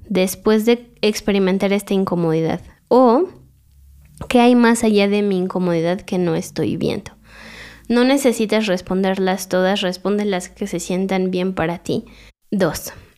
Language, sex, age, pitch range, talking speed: Spanish, female, 20-39, 185-230 Hz, 135 wpm